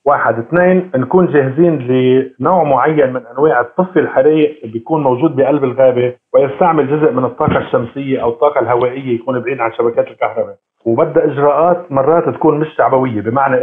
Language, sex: Arabic, male